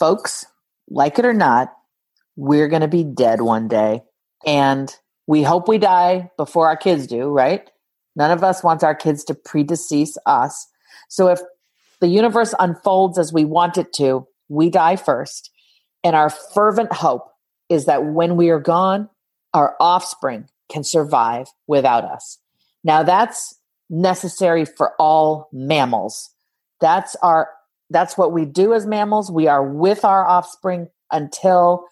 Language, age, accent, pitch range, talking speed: English, 40-59, American, 145-180 Hz, 150 wpm